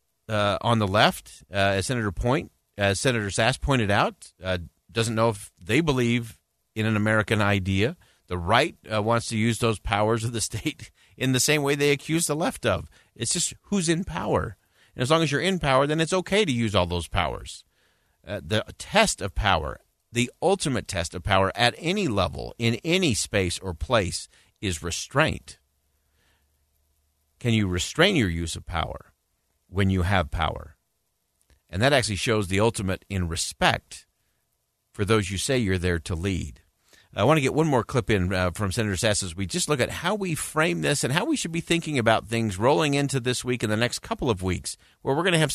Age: 50-69